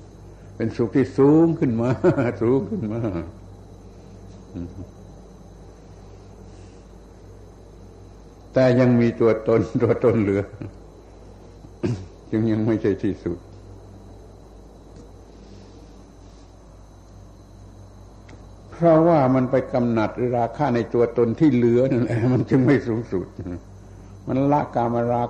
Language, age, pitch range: Thai, 60-79, 95-125 Hz